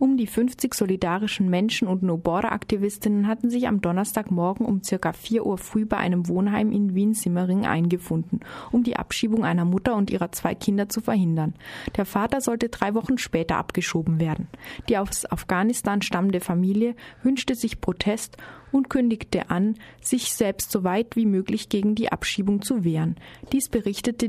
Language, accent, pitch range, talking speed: German, German, 180-225 Hz, 160 wpm